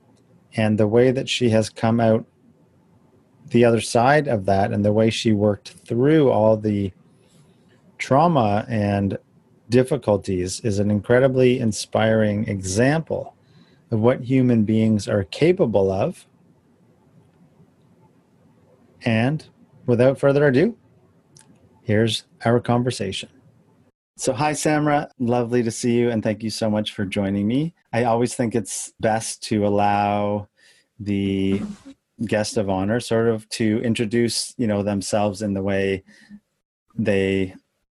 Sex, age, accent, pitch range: male, 30-49, American, 100-120 Hz